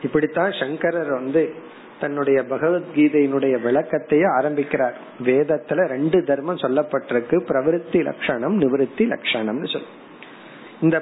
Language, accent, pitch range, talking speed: Tamil, native, 145-195 Hz, 85 wpm